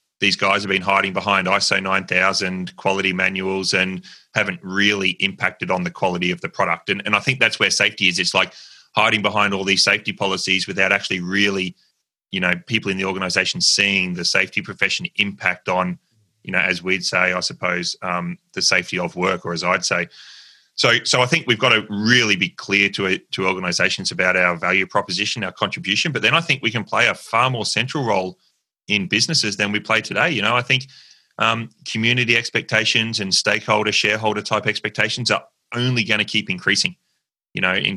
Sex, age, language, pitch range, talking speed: male, 30-49, English, 95-110 Hz, 195 wpm